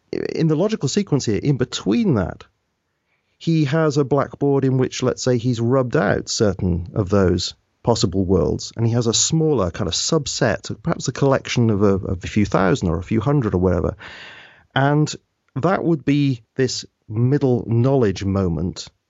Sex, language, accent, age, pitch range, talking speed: male, English, British, 40-59, 100-135 Hz, 170 wpm